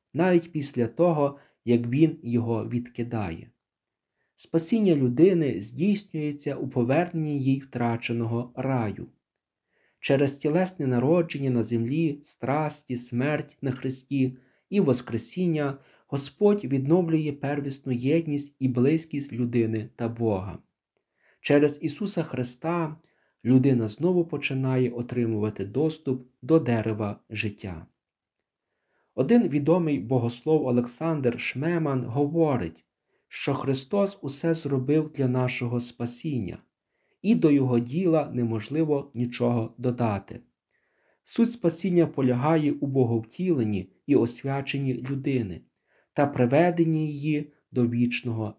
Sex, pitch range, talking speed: male, 120-155 Hz, 100 wpm